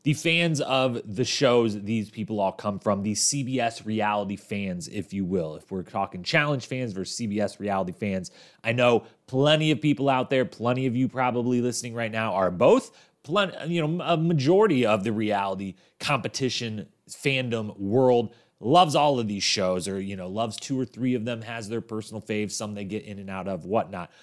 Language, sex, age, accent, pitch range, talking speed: English, male, 30-49, American, 110-145 Hz, 195 wpm